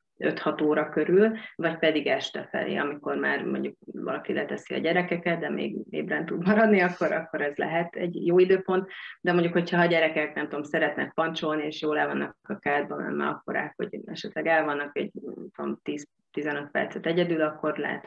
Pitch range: 145-175 Hz